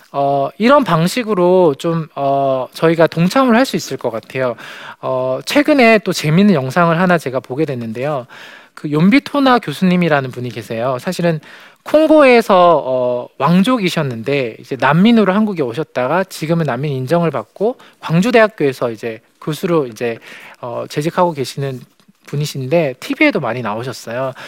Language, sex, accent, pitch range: Korean, male, native, 135-200 Hz